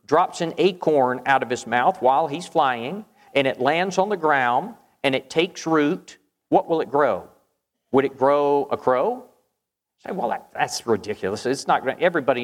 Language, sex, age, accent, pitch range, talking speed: English, male, 50-69, American, 135-180 Hz, 185 wpm